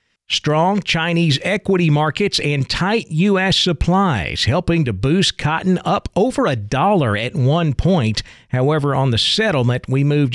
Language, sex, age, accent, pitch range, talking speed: English, male, 50-69, American, 120-160 Hz, 145 wpm